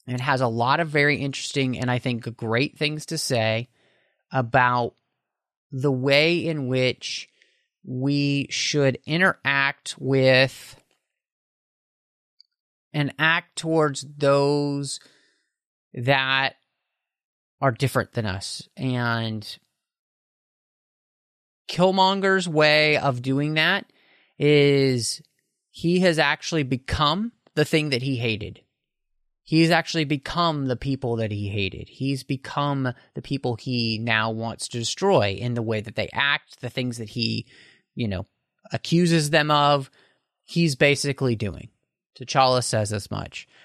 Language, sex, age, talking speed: English, male, 30-49, 120 wpm